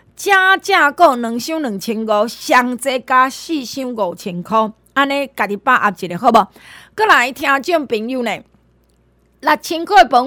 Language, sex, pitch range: Chinese, female, 220-310 Hz